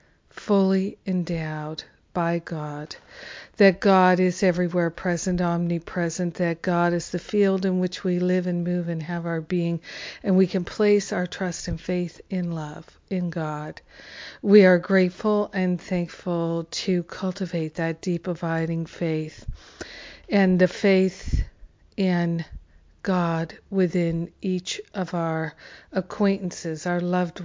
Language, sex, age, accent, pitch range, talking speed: English, female, 50-69, American, 170-185 Hz, 130 wpm